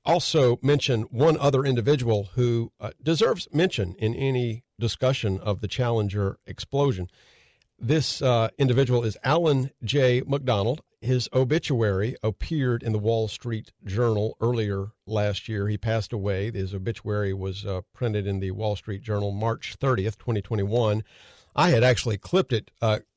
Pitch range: 110-145 Hz